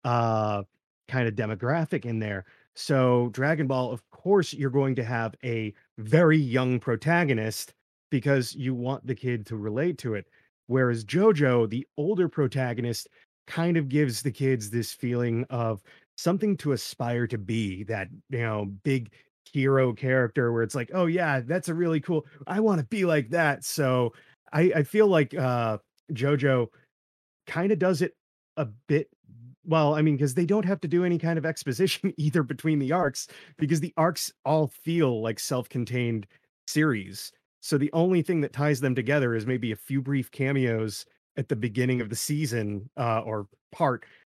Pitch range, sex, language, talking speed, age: 120-160 Hz, male, English, 175 wpm, 30-49